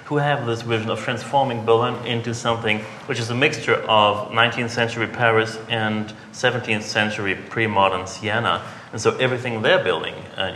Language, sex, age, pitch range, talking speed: English, male, 30-49, 105-120 Hz, 165 wpm